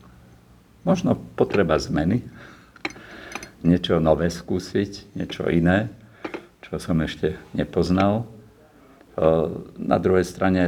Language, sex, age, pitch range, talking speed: Slovak, male, 50-69, 80-90 Hz, 85 wpm